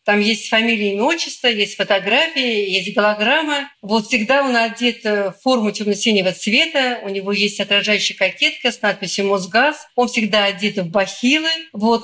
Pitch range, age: 210-275 Hz, 50-69